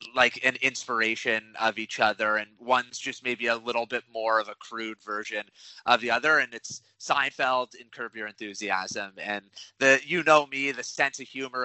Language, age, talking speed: English, 30-49, 190 wpm